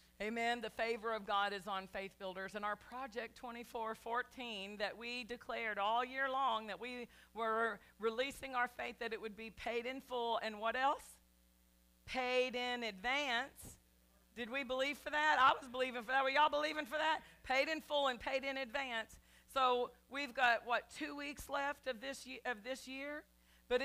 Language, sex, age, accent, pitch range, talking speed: English, female, 50-69, American, 235-300 Hz, 185 wpm